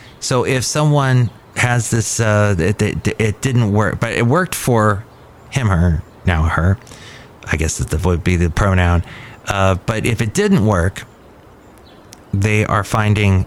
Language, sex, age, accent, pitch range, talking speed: English, male, 30-49, American, 105-130 Hz, 155 wpm